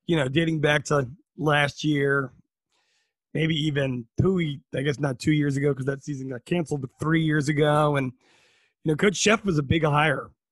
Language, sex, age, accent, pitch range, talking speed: English, male, 20-39, American, 145-165 Hz, 195 wpm